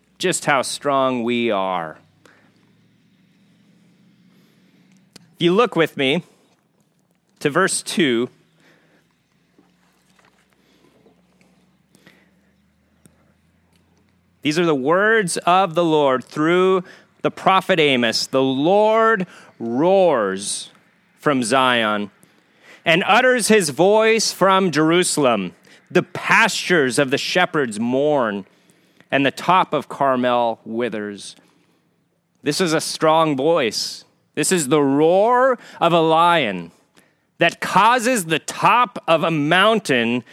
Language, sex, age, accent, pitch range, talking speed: English, male, 30-49, American, 135-190 Hz, 100 wpm